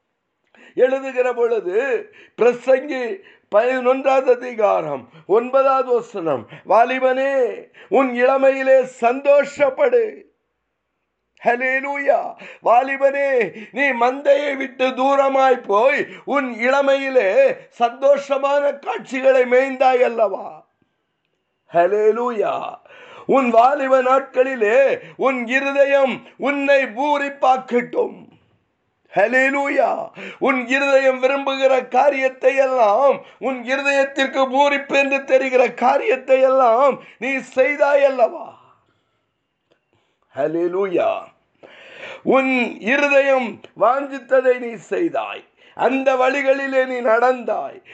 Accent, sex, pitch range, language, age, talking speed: native, male, 255-280 Hz, Tamil, 50-69, 45 wpm